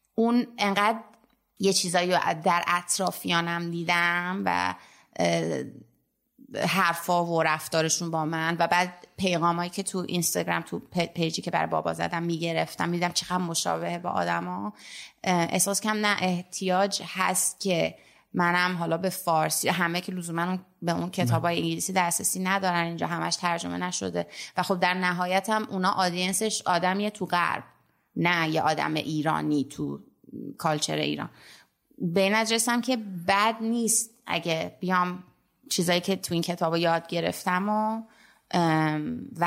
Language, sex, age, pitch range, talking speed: Persian, female, 30-49, 165-195 Hz, 135 wpm